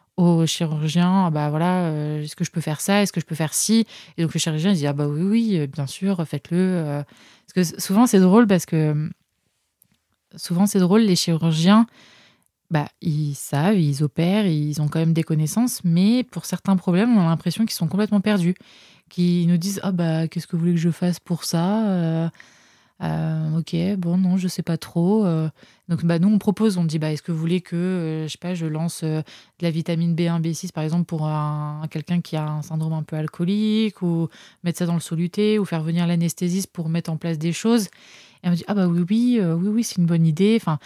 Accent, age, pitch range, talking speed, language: French, 20-39, 160-195 Hz, 235 wpm, French